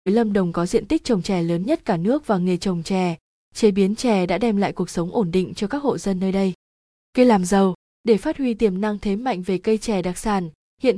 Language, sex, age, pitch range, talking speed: Vietnamese, female, 20-39, 190-230 Hz, 255 wpm